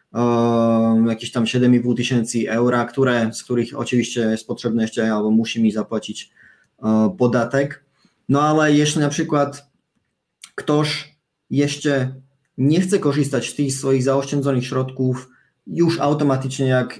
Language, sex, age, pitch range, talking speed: Polish, male, 20-39, 125-145 Hz, 125 wpm